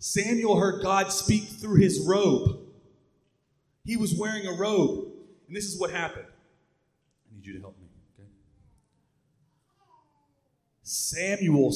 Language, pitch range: English, 140-200 Hz